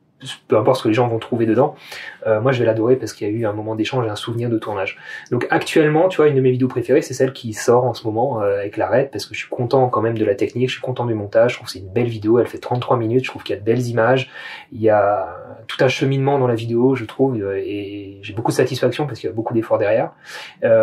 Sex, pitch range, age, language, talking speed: male, 105-130 Hz, 30-49, French, 300 wpm